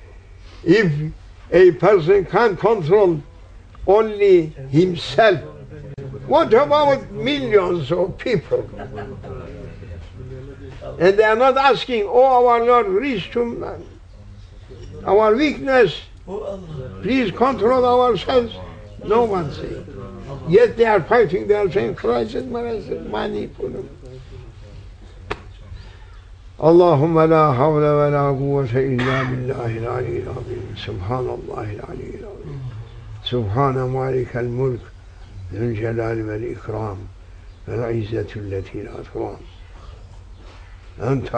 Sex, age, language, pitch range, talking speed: male, 60-79, English, 100-155 Hz, 95 wpm